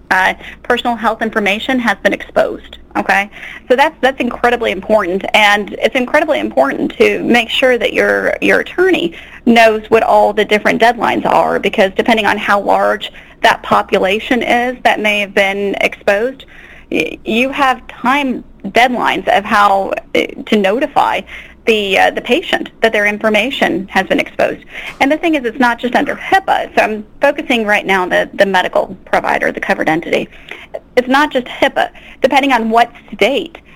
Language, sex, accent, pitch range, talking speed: English, female, American, 205-270 Hz, 165 wpm